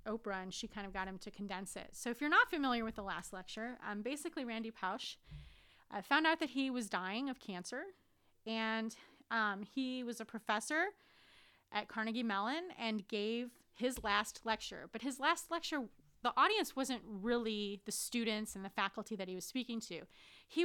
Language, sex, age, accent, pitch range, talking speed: English, female, 30-49, American, 205-260 Hz, 190 wpm